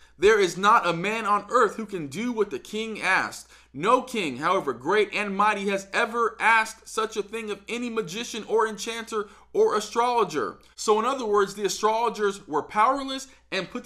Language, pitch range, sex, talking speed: English, 200-240 Hz, male, 185 wpm